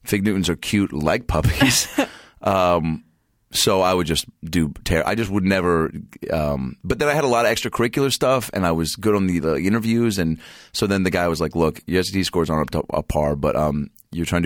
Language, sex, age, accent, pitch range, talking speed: English, male, 30-49, American, 75-95 Hz, 220 wpm